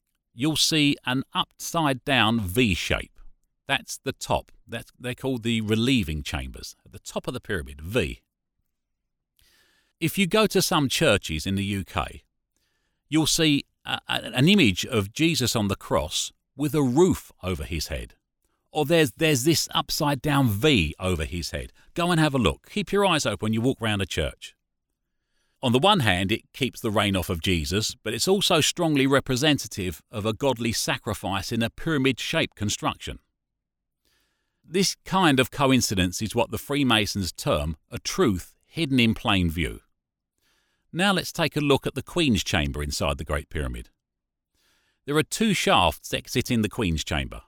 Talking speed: 165 wpm